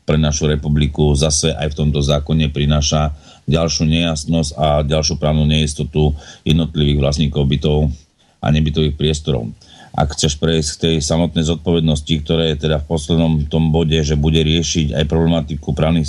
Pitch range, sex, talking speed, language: 75-85 Hz, male, 155 wpm, Slovak